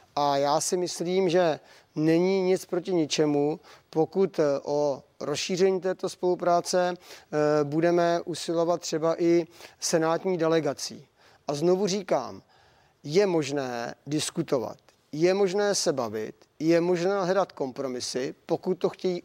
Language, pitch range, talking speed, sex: Czech, 145-180 Hz, 115 wpm, male